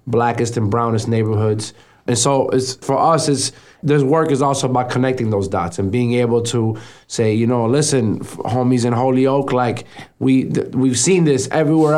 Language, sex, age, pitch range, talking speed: English, male, 20-39, 120-140 Hz, 185 wpm